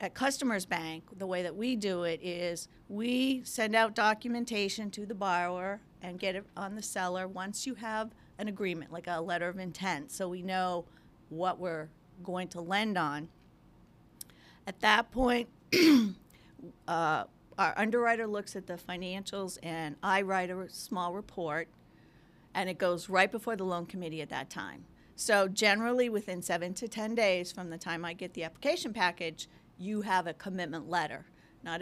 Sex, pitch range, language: female, 175-215 Hz, English